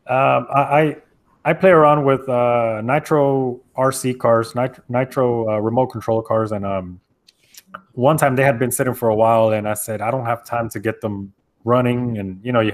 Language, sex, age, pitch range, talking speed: English, male, 20-39, 115-135 Hz, 200 wpm